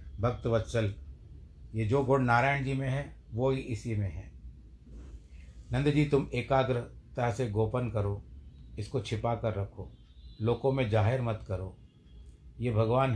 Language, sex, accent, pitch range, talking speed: Hindi, male, native, 95-120 Hz, 145 wpm